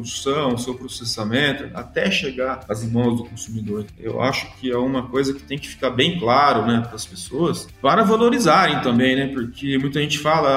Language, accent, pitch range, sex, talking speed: Portuguese, Brazilian, 120-160 Hz, male, 185 wpm